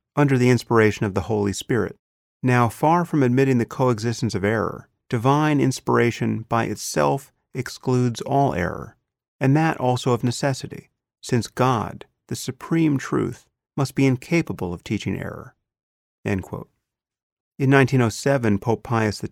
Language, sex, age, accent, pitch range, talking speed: English, male, 40-59, American, 110-135 Hz, 130 wpm